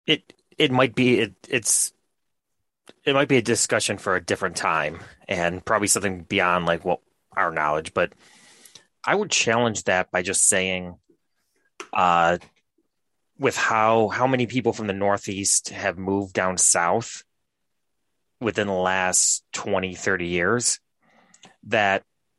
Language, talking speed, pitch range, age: English, 140 wpm, 90-110 Hz, 30-49